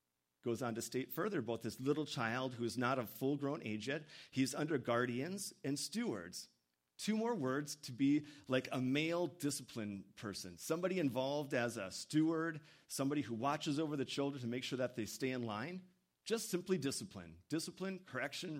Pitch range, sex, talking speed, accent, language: 120-160 Hz, male, 180 wpm, American, English